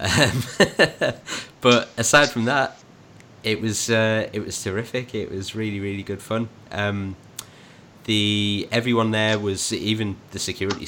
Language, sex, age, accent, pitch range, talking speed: English, male, 30-49, British, 90-105 Hz, 140 wpm